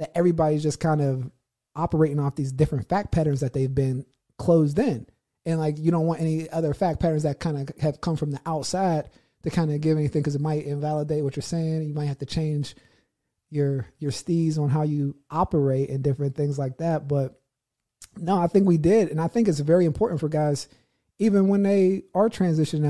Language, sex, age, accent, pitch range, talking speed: English, male, 30-49, American, 140-165 Hz, 210 wpm